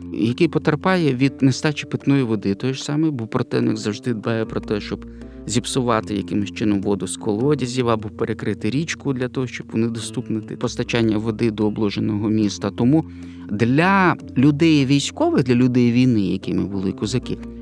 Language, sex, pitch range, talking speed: Ukrainian, male, 115-165 Hz, 150 wpm